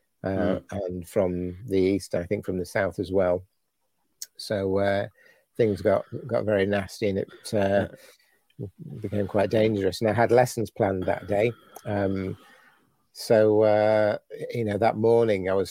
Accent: British